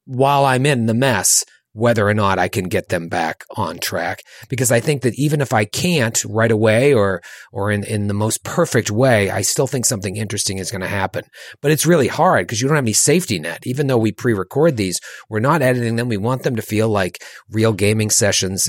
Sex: male